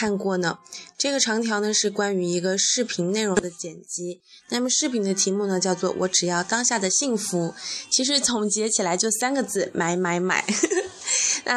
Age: 20-39